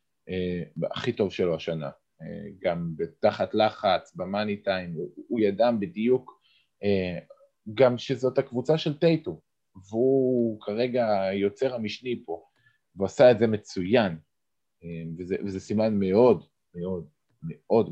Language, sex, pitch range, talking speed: Hebrew, male, 95-135 Hz, 120 wpm